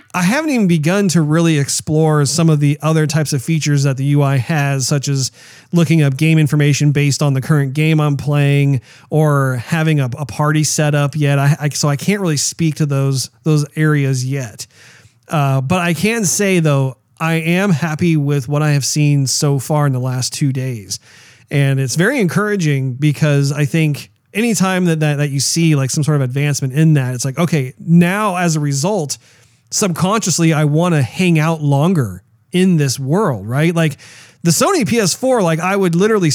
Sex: male